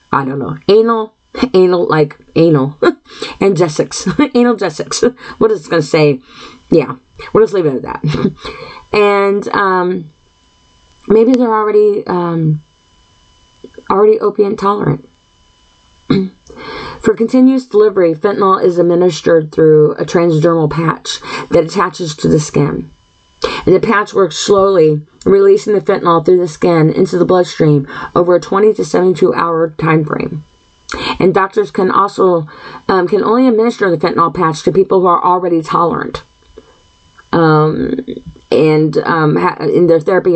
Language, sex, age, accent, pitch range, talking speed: English, female, 20-39, American, 160-205 Hz, 135 wpm